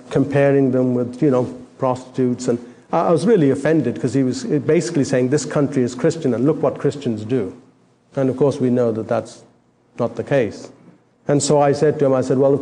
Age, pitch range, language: 50-69, 125-160 Hz, English